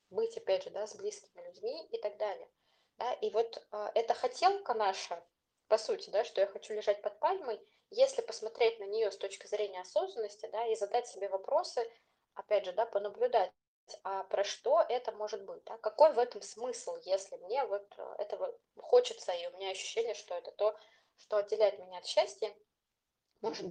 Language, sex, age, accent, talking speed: Russian, female, 20-39, native, 180 wpm